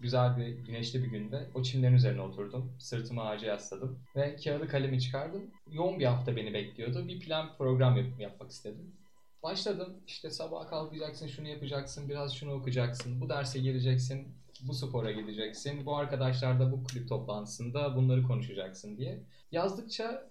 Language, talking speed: Turkish, 155 wpm